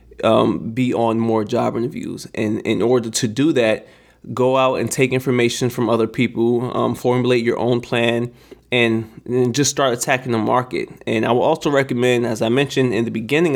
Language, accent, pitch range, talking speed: Italian, American, 115-130 Hz, 185 wpm